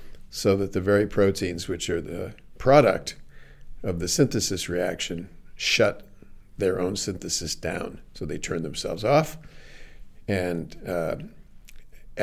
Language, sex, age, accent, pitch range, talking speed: Danish, male, 50-69, American, 95-115 Hz, 125 wpm